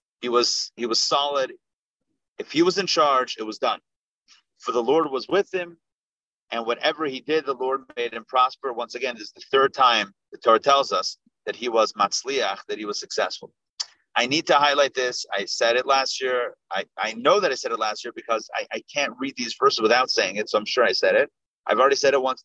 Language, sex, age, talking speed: English, male, 30-49, 235 wpm